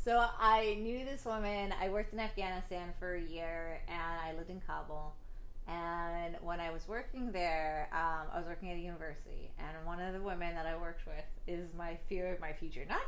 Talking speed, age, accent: 210 wpm, 30-49, American